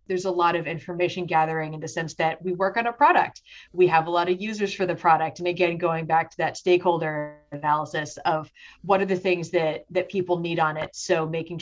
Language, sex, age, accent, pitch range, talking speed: English, female, 30-49, American, 165-185 Hz, 235 wpm